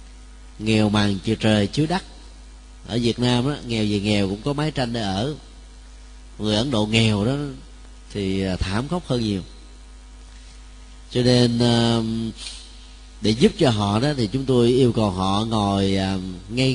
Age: 30-49